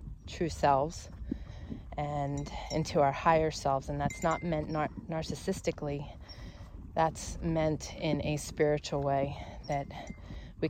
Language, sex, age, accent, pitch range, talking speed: English, female, 30-49, American, 125-155 Hz, 110 wpm